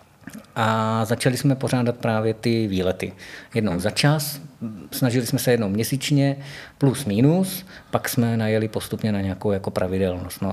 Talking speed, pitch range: 150 wpm, 110-135 Hz